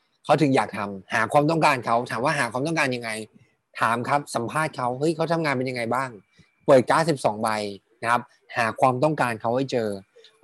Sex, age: male, 20-39